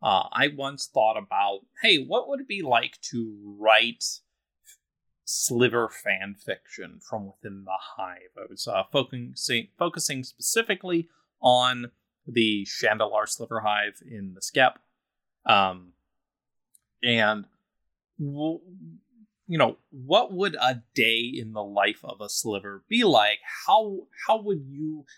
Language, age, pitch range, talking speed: English, 30-49, 105-155 Hz, 125 wpm